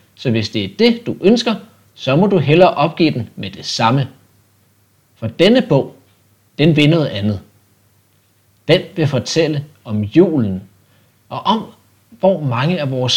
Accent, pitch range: native, 105-180 Hz